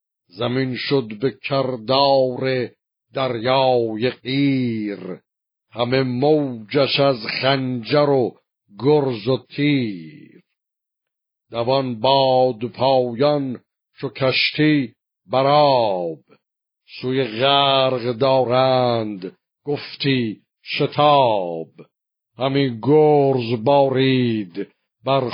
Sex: male